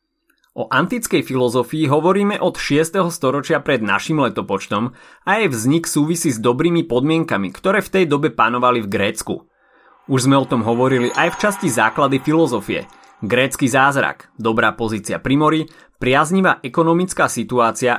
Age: 30-49